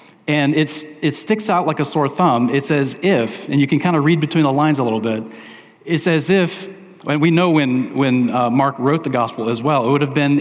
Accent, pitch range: American, 120-155 Hz